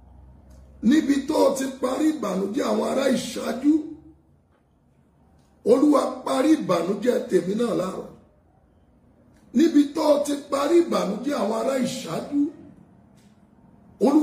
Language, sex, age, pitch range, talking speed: English, male, 50-69, 195-280 Hz, 70 wpm